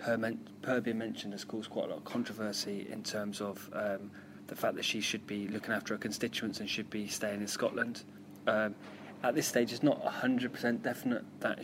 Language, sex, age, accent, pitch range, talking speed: English, male, 20-39, British, 105-120 Hz, 200 wpm